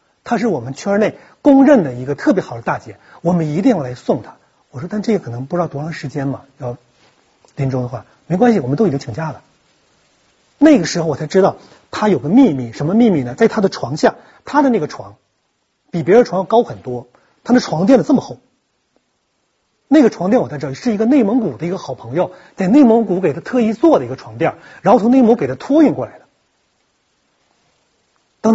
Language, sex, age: Chinese, male, 30-49